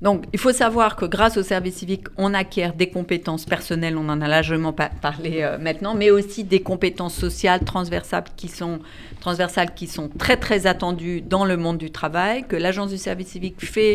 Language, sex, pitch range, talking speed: French, female, 160-200 Hz, 200 wpm